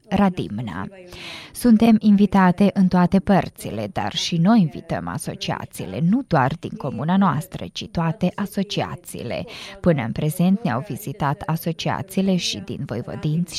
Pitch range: 150-190 Hz